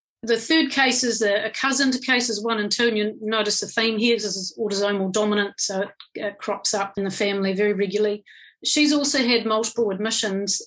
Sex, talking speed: female, 200 wpm